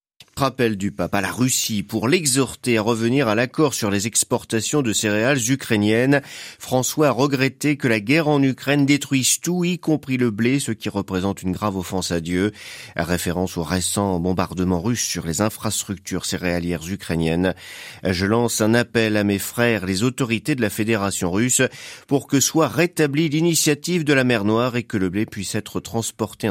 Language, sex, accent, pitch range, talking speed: French, male, French, 95-130 Hz, 185 wpm